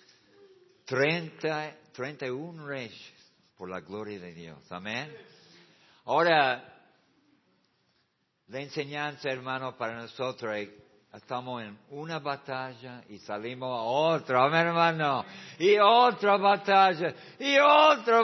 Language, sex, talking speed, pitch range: Spanish, male, 110 wpm, 115-170 Hz